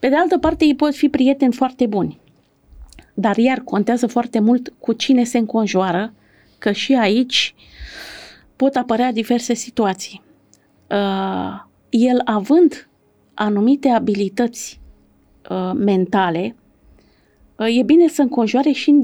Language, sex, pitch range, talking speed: Romanian, female, 205-265 Hz, 115 wpm